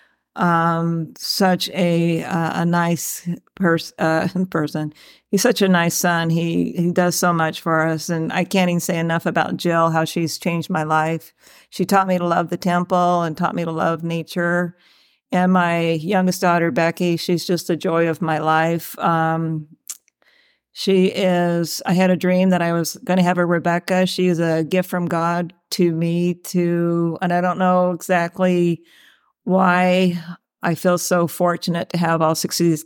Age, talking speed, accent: 50-69, 180 wpm, American